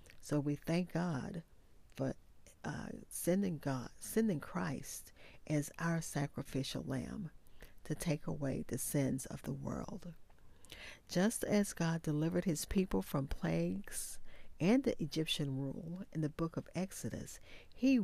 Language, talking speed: English, 135 wpm